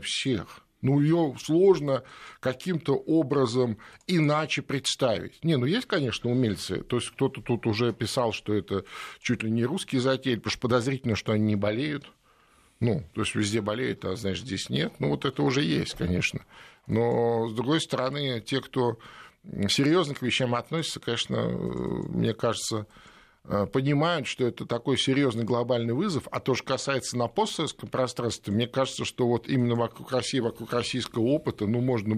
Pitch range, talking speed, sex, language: 110-130 Hz, 160 wpm, male, Russian